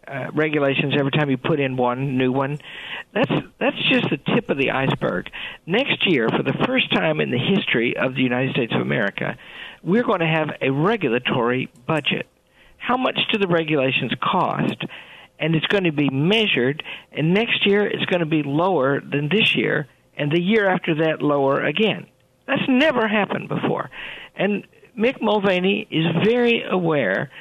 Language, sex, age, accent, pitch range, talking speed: English, male, 50-69, American, 150-220 Hz, 175 wpm